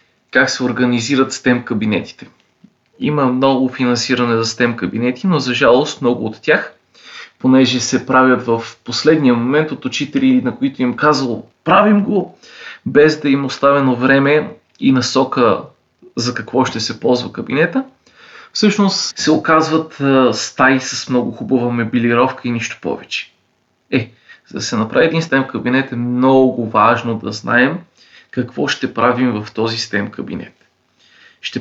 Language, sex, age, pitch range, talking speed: Bulgarian, male, 20-39, 120-140 Hz, 145 wpm